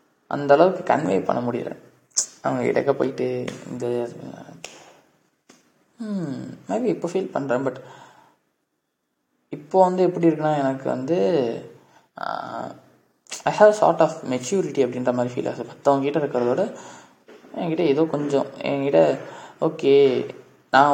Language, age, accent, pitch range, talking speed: Tamil, 20-39, native, 130-170 Hz, 45 wpm